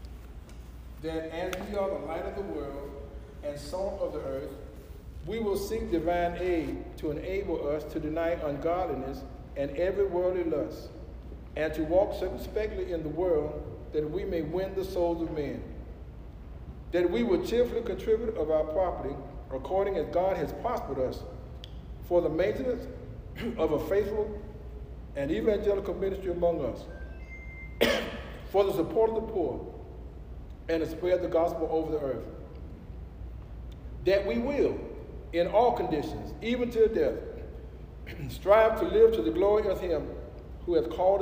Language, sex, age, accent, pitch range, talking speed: English, male, 60-79, American, 120-195 Hz, 150 wpm